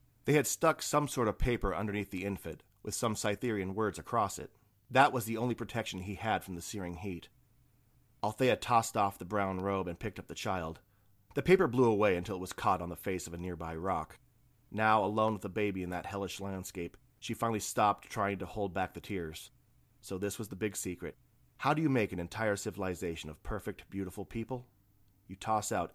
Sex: male